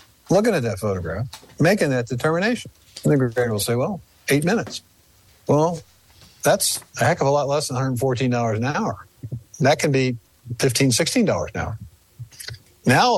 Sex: male